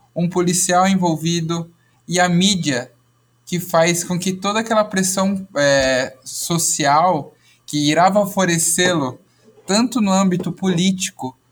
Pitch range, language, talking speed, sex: 145-190 Hz, Portuguese, 115 wpm, male